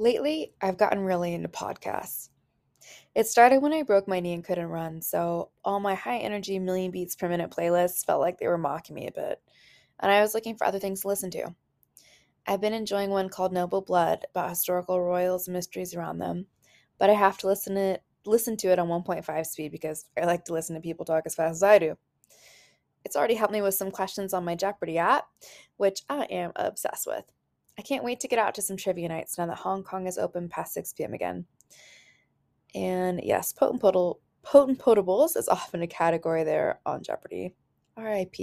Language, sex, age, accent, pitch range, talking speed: English, female, 20-39, American, 175-200 Hz, 200 wpm